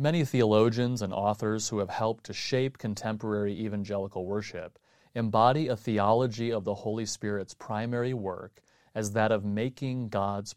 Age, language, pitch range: 30-49, English, 100-120 Hz